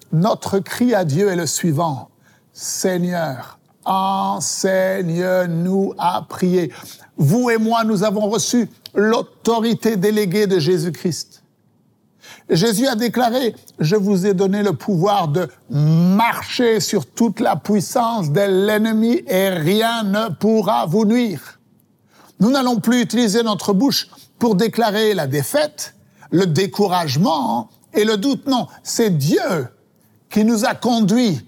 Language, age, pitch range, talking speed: French, 60-79, 175-230 Hz, 130 wpm